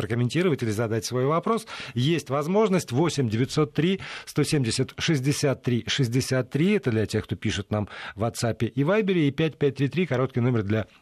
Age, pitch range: 40-59, 105-140 Hz